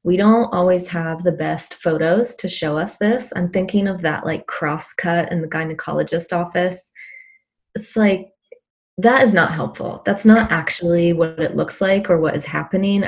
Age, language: 20-39, English